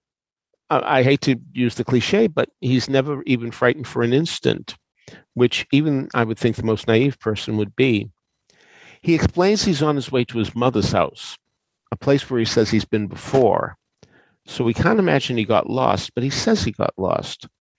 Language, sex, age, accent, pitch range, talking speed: English, male, 50-69, American, 100-130 Hz, 190 wpm